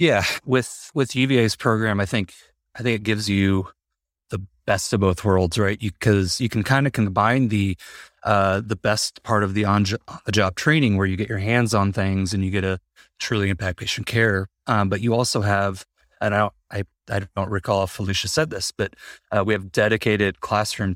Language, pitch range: English, 95-110 Hz